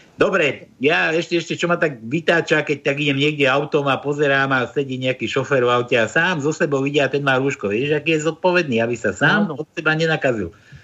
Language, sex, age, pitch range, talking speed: Slovak, male, 60-79, 115-145 Hz, 215 wpm